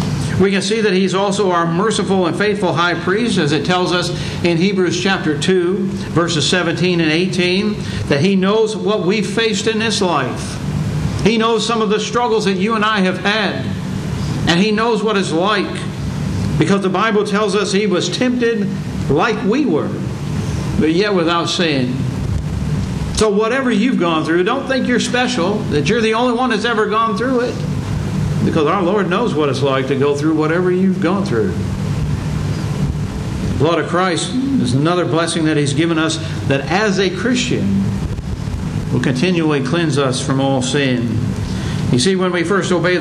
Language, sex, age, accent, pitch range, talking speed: English, male, 60-79, American, 150-200 Hz, 175 wpm